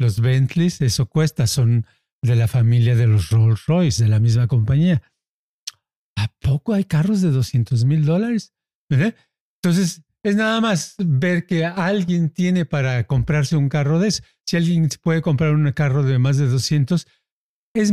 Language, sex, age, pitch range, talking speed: Spanish, male, 60-79, 140-175 Hz, 165 wpm